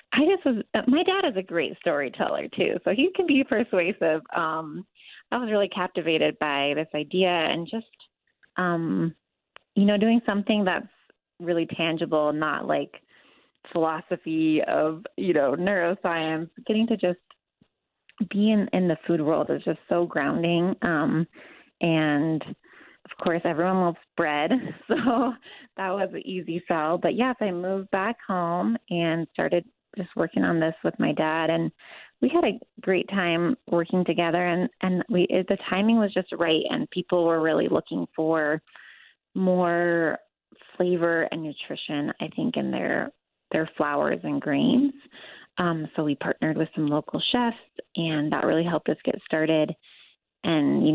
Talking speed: 160 wpm